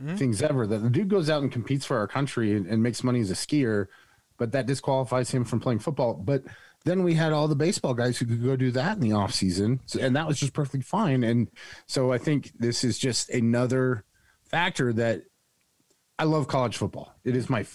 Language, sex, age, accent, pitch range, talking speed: English, male, 30-49, American, 105-130 Hz, 225 wpm